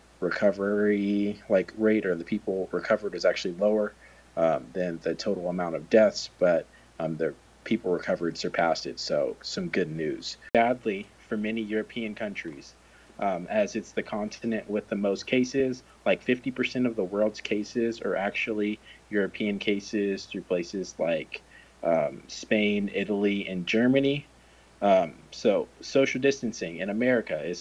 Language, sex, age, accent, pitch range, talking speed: English, male, 30-49, American, 100-125 Hz, 145 wpm